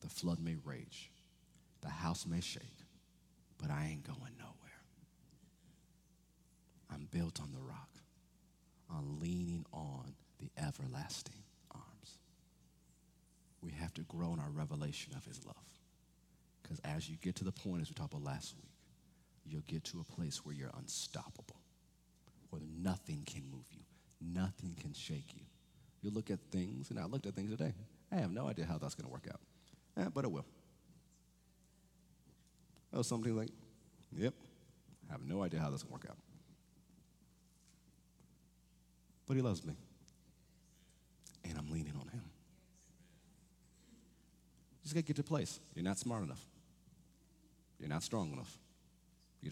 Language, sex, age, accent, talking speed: English, male, 40-59, American, 155 wpm